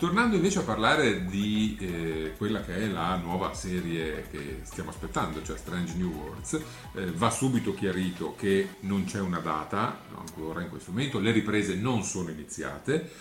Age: 50-69